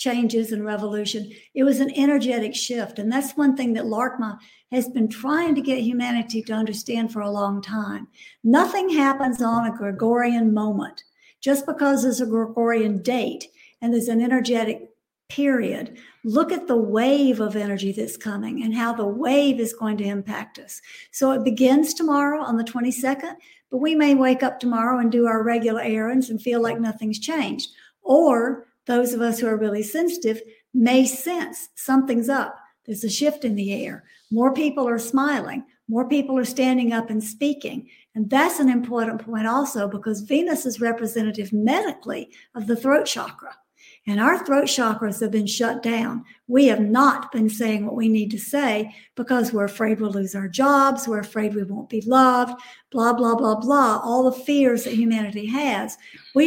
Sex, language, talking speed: female, English, 180 wpm